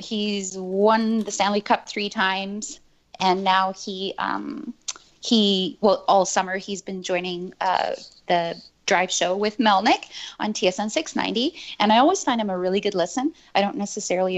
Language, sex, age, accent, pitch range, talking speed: English, female, 30-49, American, 190-235 Hz, 165 wpm